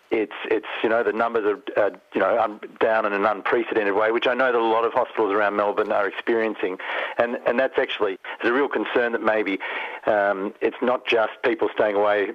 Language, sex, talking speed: English, male, 210 wpm